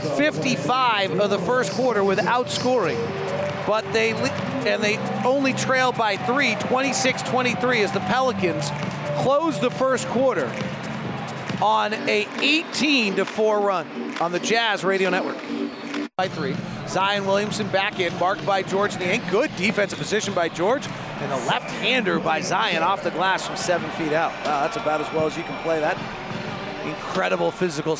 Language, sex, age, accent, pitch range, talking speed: English, male, 40-59, American, 180-210 Hz, 155 wpm